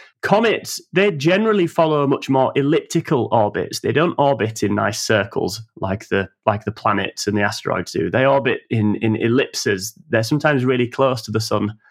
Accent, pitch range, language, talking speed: British, 110-140 Hz, English, 175 wpm